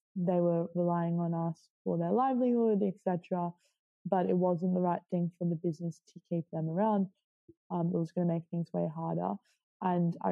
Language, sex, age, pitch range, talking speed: English, female, 20-39, 170-195 Hz, 190 wpm